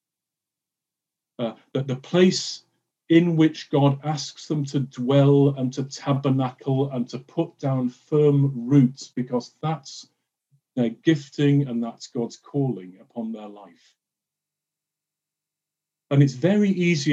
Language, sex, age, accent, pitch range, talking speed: English, male, 40-59, British, 125-155 Hz, 125 wpm